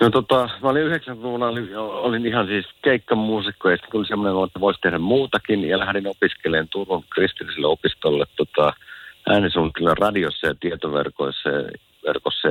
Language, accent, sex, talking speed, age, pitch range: Finnish, native, male, 135 wpm, 50-69, 80-105 Hz